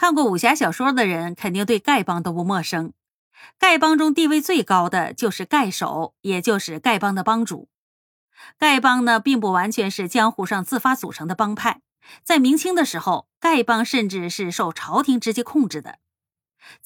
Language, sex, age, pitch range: Chinese, female, 30-49, 185-265 Hz